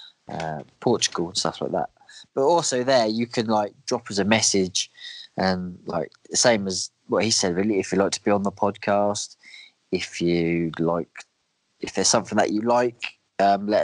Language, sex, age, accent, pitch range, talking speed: English, male, 20-39, British, 90-110 Hz, 190 wpm